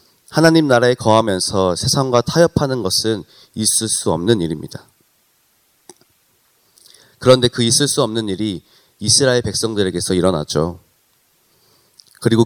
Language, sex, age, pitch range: Korean, male, 30-49, 100-130 Hz